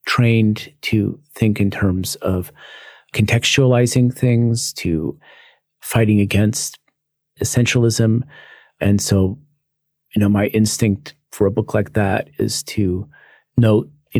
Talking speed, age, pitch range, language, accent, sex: 115 wpm, 40-59, 100-140 Hz, English, American, male